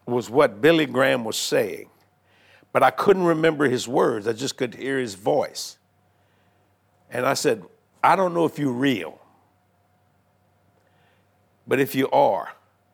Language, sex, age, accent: English, male, 60-79, American